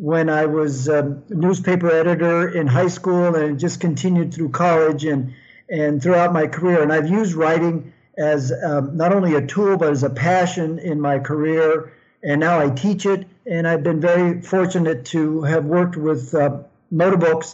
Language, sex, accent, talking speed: English, male, American, 175 wpm